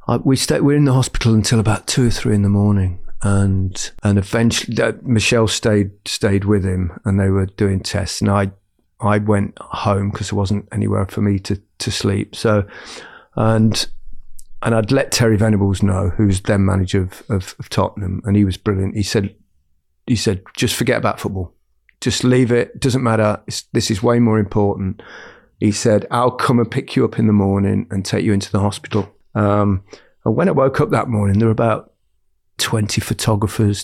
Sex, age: male, 30-49